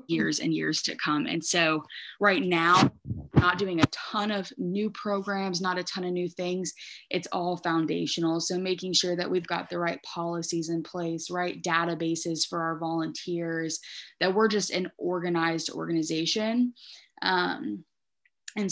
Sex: female